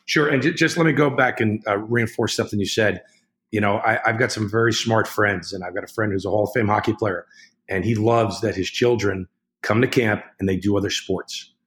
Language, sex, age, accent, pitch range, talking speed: English, male, 40-59, American, 105-125 Hz, 240 wpm